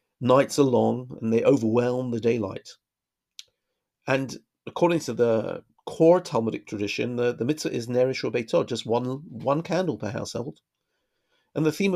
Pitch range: 120-155 Hz